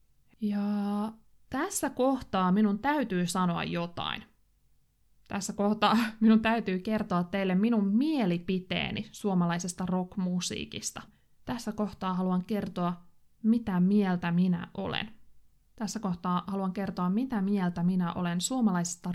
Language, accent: Finnish, native